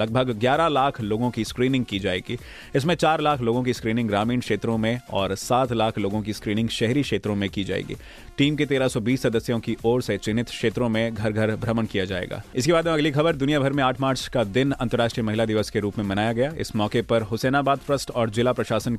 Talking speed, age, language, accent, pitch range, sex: 150 wpm, 30-49, Hindi, native, 110-130 Hz, male